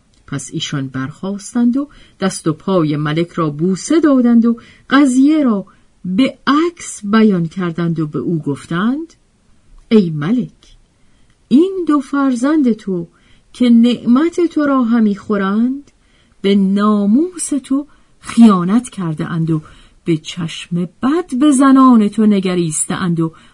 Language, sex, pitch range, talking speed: Persian, female, 160-255 Hz, 120 wpm